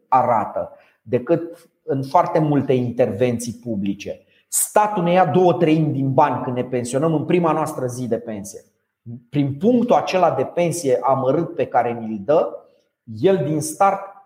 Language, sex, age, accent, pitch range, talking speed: Romanian, male, 30-49, native, 130-185 Hz, 150 wpm